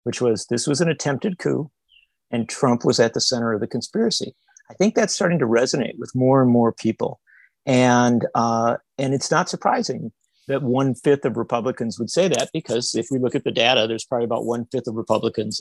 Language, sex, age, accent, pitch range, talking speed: English, male, 50-69, American, 115-145 Hz, 210 wpm